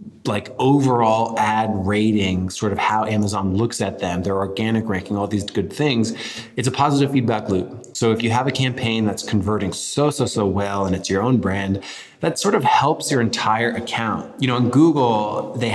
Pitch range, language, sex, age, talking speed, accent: 100-125 Hz, English, male, 20-39, 200 wpm, American